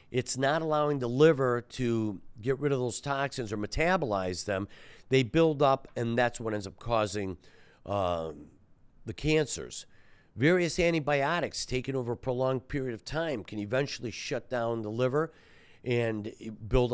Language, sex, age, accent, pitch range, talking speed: English, male, 50-69, American, 110-140 Hz, 150 wpm